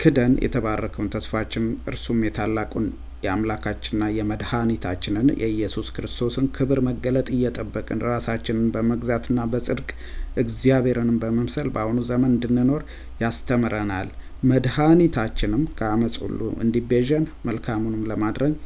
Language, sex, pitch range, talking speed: English, male, 105-125 Hz, 75 wpm